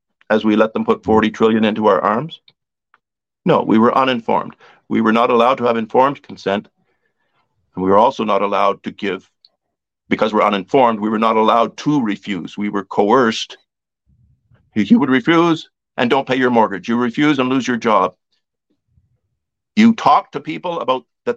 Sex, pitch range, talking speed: male, 100-125 Hz, 175 wpm